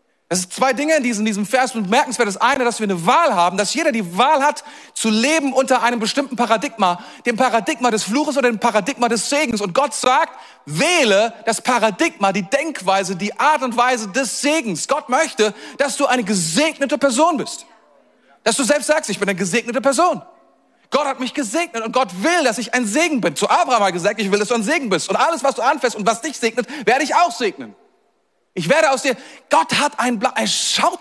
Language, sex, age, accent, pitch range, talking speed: German, male, 40-59, German, 225-295 Hz, 225 wpm